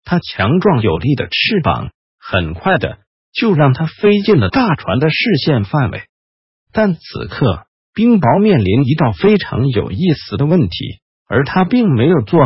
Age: 50-69